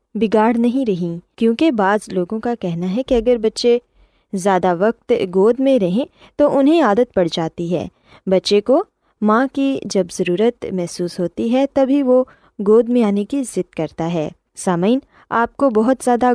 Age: 20-39